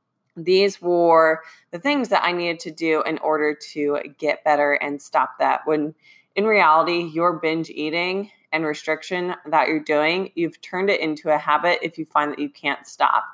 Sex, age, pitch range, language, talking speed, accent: female, 20-39, 155-185 Hz, English, 185 wpm, American